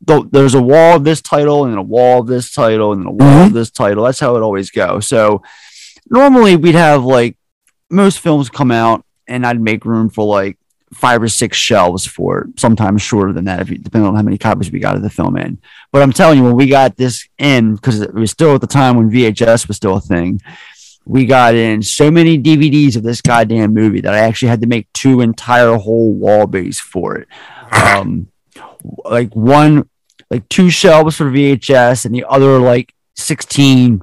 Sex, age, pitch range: male, 30-49, 110-150 Hz